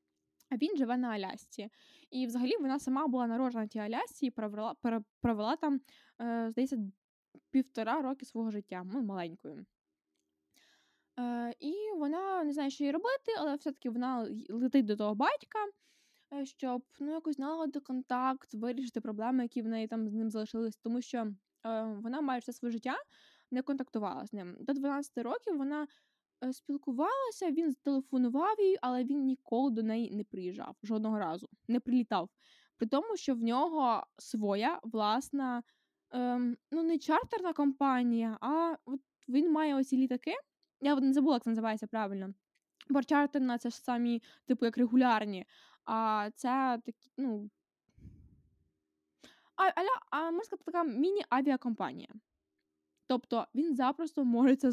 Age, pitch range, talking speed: 10-29, 225-285 Hz, 140 wpm